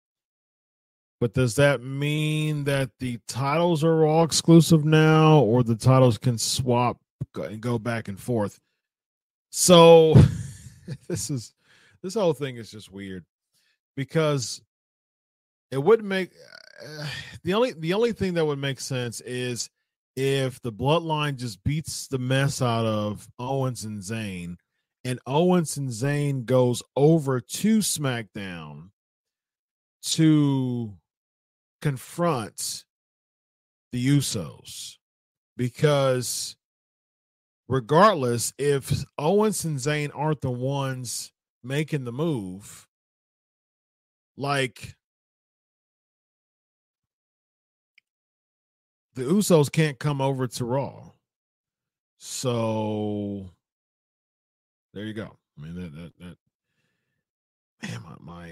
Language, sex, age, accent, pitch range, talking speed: English, male, 40-59, American, 115-150 Hz, 105 wpm